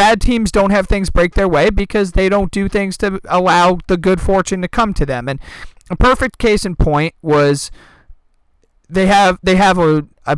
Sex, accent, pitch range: male, American, 145-190 Hz